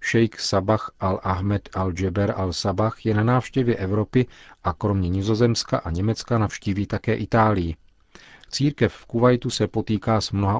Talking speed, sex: 135 wpm, male